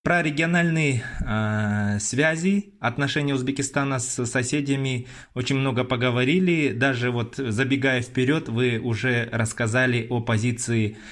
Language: Russian